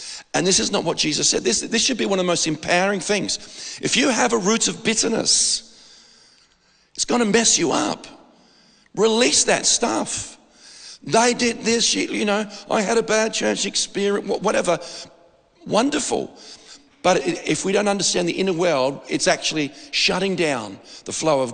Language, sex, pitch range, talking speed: English, male, 155-220 Hz, 165 wpm